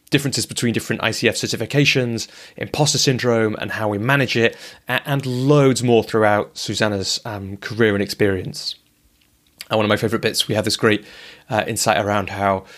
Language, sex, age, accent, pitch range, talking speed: English, male, 30-49, British, 110-145 Hz, 165 wpm